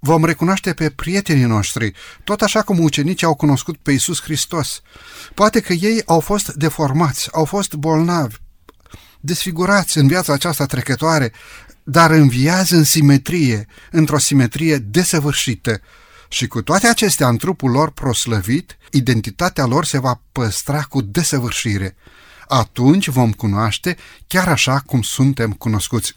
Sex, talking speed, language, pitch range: male, 135 wpm, Romanian, 120-160 Hz